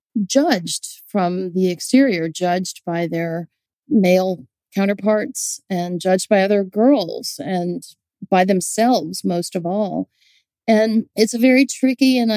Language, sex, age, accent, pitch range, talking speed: English, female, 40-59, American, 185-230 Hz, 125 wpm